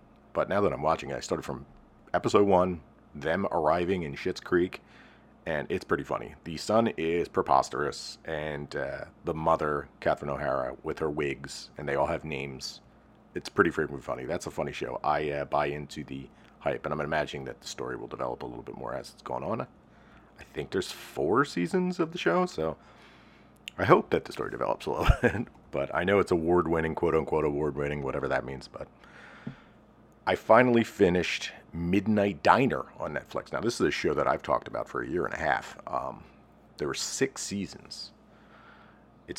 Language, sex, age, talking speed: English, male, 40-59, 190 wpm